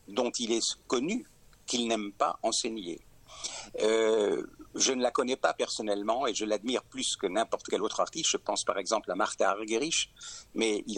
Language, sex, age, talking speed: French, male, 60-79, 180 wpm